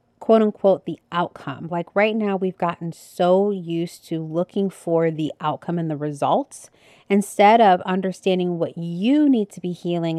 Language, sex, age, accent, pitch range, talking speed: English, female, 30-49, American, 155-185 Hz, 165 wpm